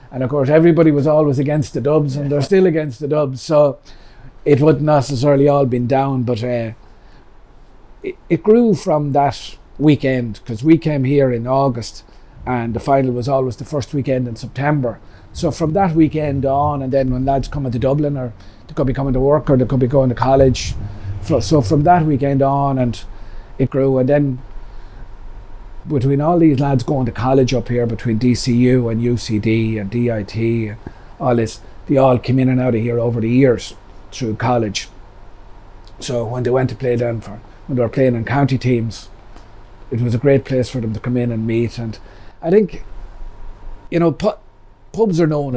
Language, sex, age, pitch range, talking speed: English, male, 40-59, 110-140 Hz, 195 wpm